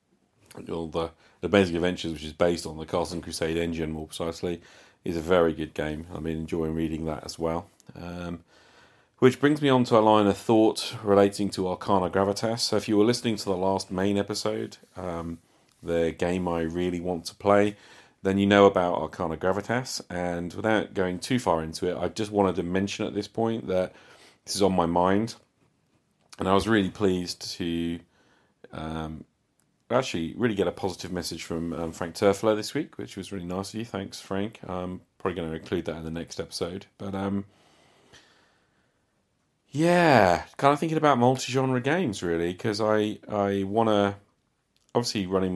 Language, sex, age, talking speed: English, male, 40-59, 185 wpm